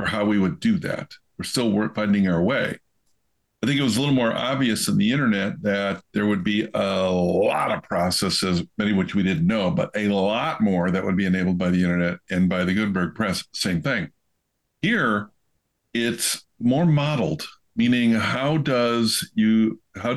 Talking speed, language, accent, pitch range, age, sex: 185 wpm, English, American, 95-130 Hz, 50-69, male